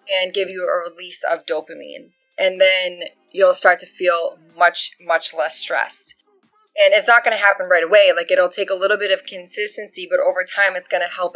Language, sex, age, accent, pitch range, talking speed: English, female, 20-39, American, 175-220 Hz, 210 wpm